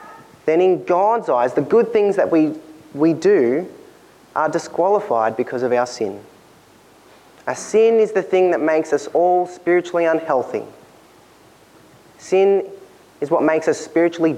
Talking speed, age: 140 wpm, 20-39